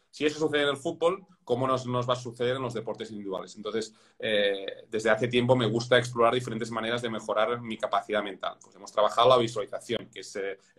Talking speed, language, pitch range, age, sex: 215 wpm, Spanish, 115-130 Hz, 40-59, male